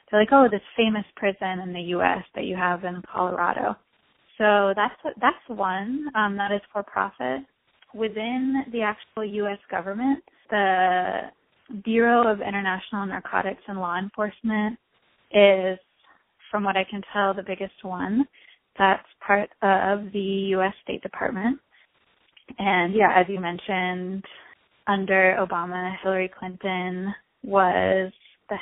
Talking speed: 130 wpm